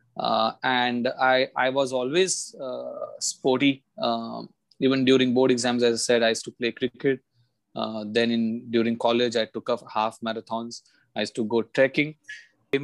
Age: 20-39